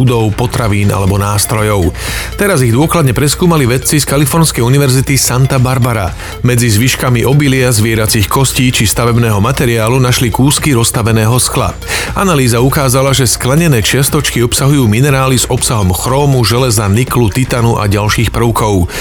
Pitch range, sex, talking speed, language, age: 110-135 Hz, male, 135 wpm, Slovak, 40-59